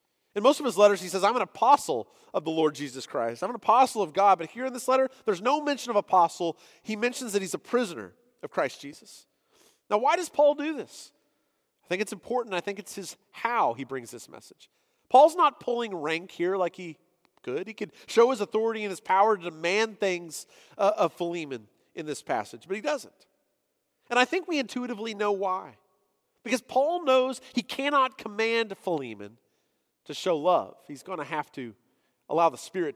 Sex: male